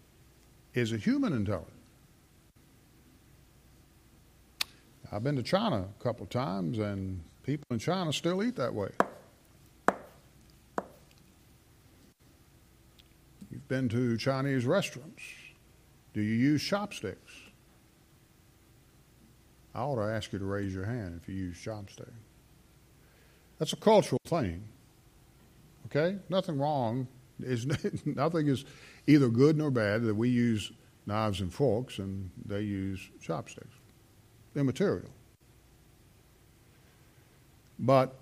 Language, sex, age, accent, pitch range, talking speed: English, male, 50-69, American, 110-135 Hz, 110 wpm